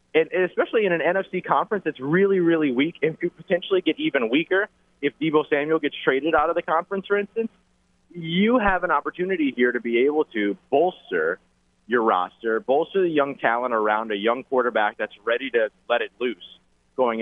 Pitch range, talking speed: 115-170 Hz, 190 wpm